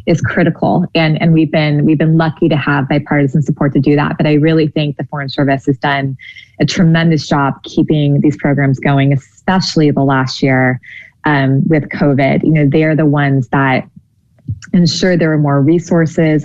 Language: English